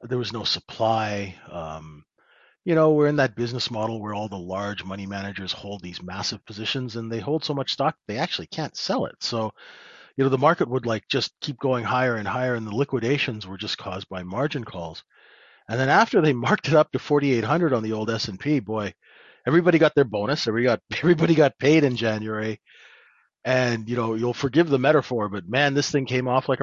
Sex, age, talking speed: male, 40-59, 210 wpm